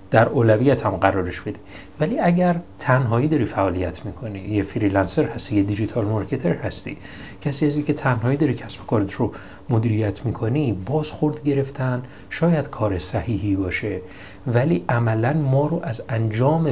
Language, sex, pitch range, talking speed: Persian, male, 100-145 Hz, 145 wpm